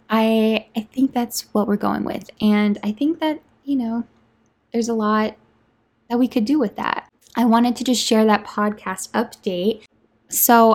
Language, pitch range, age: English, 195-225 Hz, 10-29